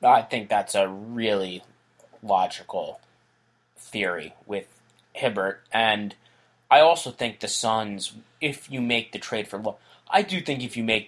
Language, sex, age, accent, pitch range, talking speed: English, male, 20-39, American, 95-110 Hz, 150 wpm